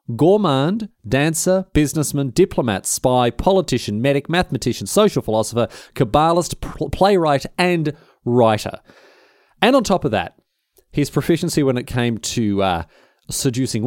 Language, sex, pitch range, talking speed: English, male, 100-140 Hz, 115 wpm